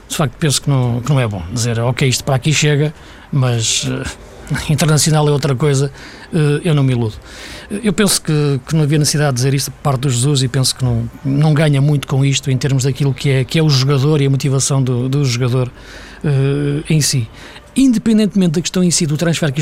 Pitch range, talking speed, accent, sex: 135-175 Hz, 215 wpm, Portuguese, male